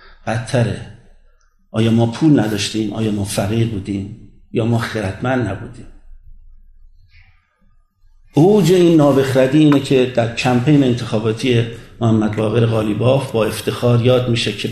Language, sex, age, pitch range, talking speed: Persian, male, 50-69, 105-130 Hz, 120 wpm